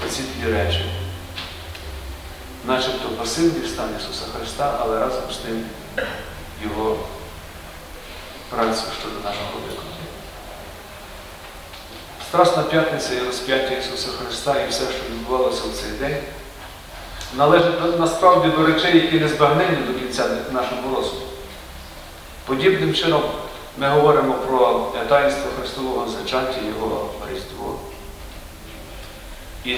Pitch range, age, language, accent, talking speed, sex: 80-130 Hz, 40-59, Ukrainian, native, 105 wpm, male